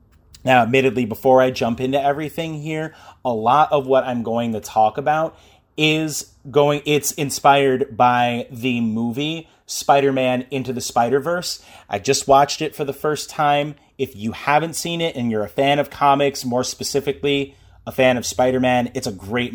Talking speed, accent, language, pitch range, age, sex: 170 wpm, American, English, 120-145 Hz, 30-49, male